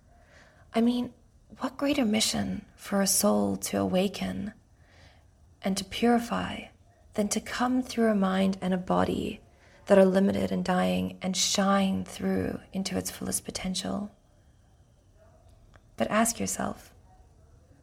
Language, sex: English, female